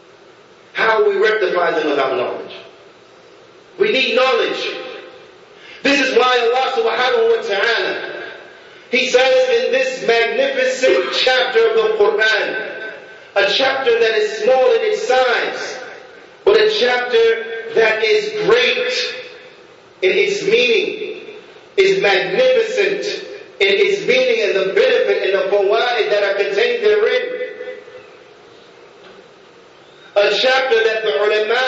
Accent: American